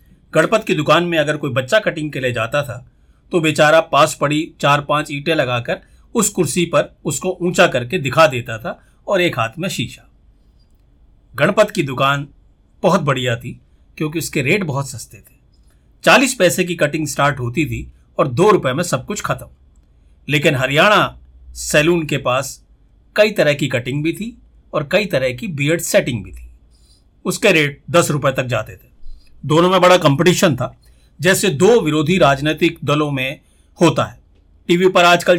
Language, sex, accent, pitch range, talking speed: Hindi, male, native, 130-175 Hz, 175 wpm